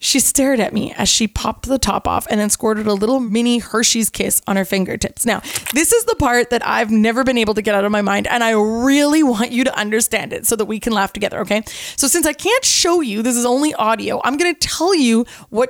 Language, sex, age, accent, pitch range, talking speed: English, female, 20-39, American, 205-265 Hz, 255 wpm